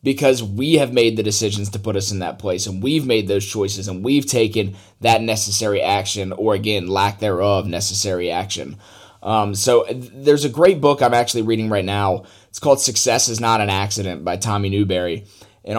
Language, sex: English, male